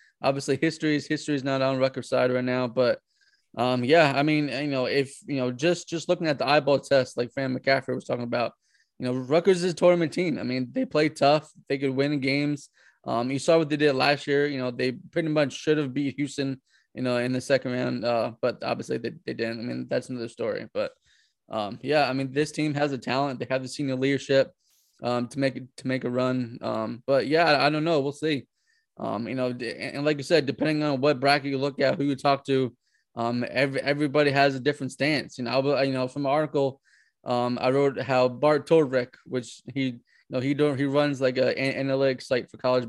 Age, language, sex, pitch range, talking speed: 20-39, English, male, 125-145 Hz, 235 wpm